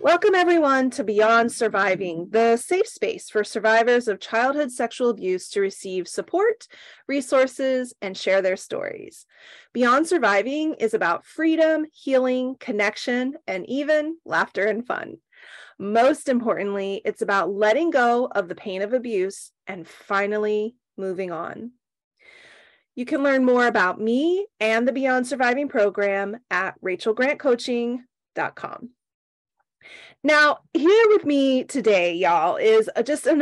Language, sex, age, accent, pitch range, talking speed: English, female, 30-49, American, 205-290 Hz, 125 wpm